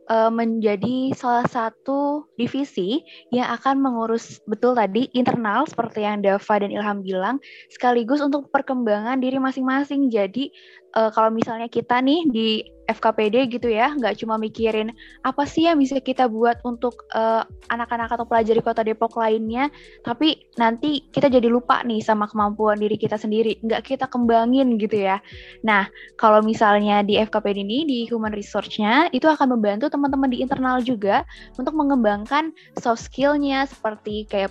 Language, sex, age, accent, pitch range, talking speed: Indonesian, female, 10-29, native, 215-265 Hz, 150 wpm